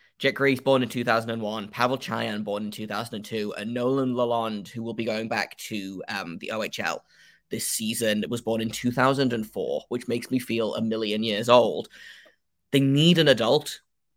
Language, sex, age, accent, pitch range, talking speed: English, male, 10-29, British, 110-140 Hz, 210 wpm